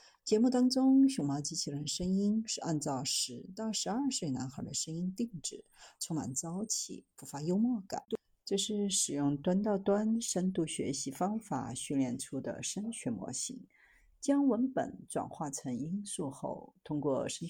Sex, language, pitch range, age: female, Chinese, 150-225 Hz, 50-69